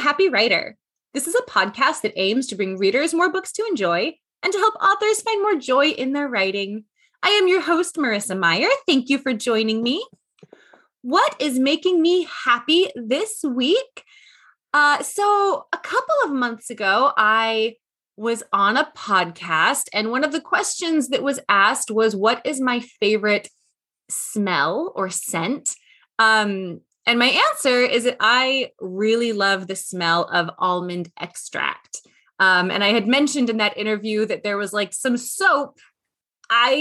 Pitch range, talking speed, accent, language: 210-305 Hz, 165 wpm, American, English